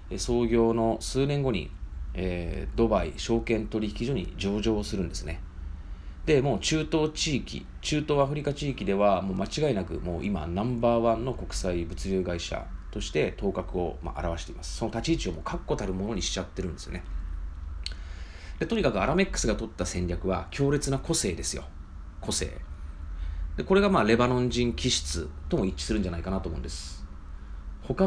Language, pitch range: Japanese, 80-115 Hz